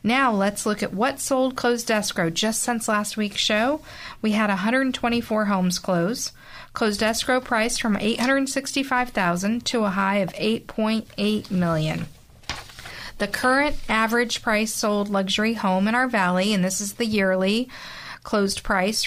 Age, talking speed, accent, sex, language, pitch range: 40-59, 150 wpm, American, female, English, 190-230 Hz